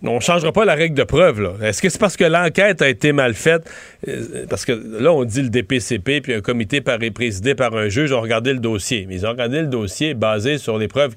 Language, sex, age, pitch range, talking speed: French, male, 40-59, 110-150 Hz, 260 wpm